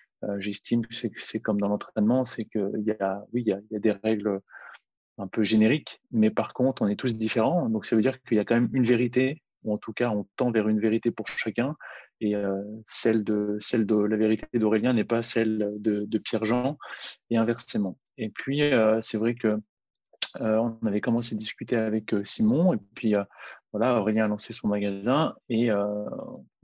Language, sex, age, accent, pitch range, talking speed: French, male, 20-39, French, 105-120 Hz, 205 wpm